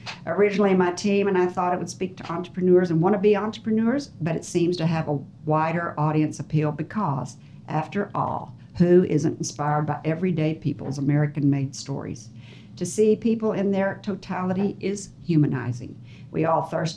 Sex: female